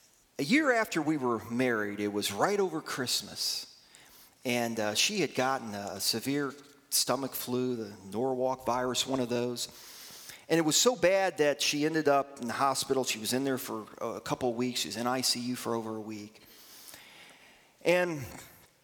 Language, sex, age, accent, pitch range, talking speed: English, male, 40-59, American, 115-145 Hz, 180 wpm